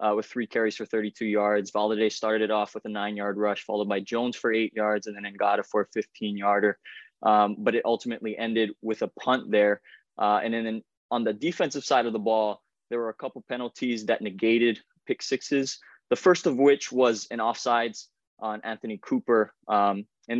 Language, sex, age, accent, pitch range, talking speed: English, male, 20-39, American, 105-125 Hz, 195 wpm